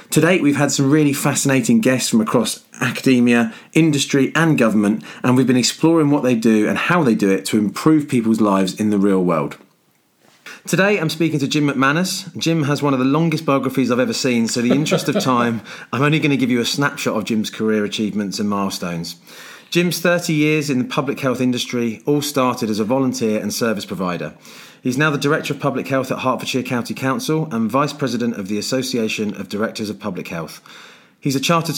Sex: male